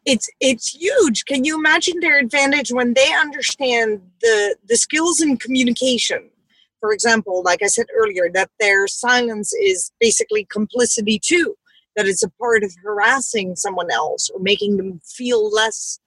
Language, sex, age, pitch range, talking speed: English, female, 40-59, 215-315 Hz, 155 wpm